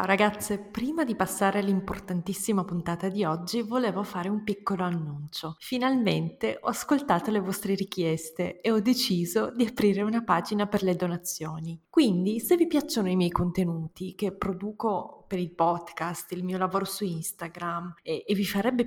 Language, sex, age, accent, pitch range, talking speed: Italian, female, 20-39, native, 180-230 Hz, 160 wpm